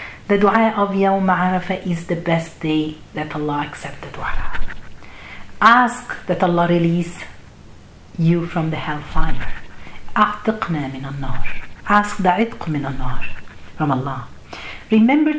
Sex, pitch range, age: female, 165-215 Hz, 50-69